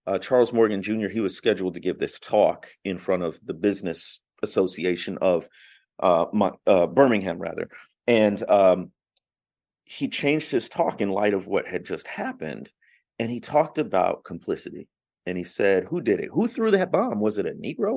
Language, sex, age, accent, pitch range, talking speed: English, male, 40-59, American, 105-150 Hz, 180 wpm